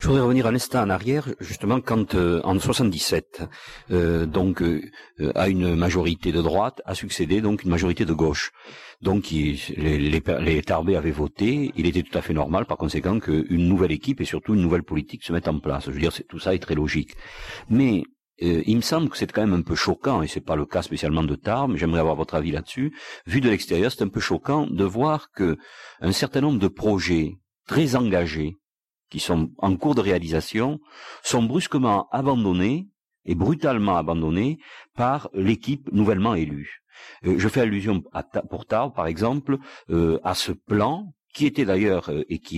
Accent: French